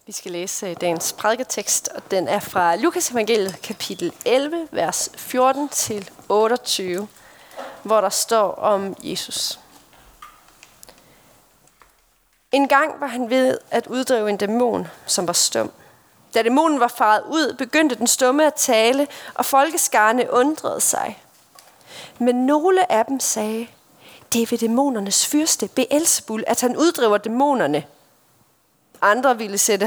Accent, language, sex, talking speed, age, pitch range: native, Danish, female, 130 wpm, 30-49, 220-285 Hz